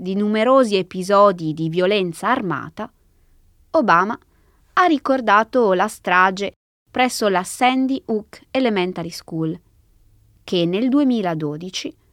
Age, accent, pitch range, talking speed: 20-39, native, 165-260 Hz, 100 wpm